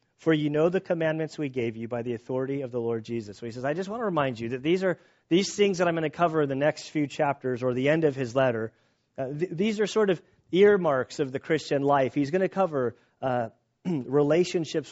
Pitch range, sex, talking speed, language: 130-165 Hz, male, 250 wpm, English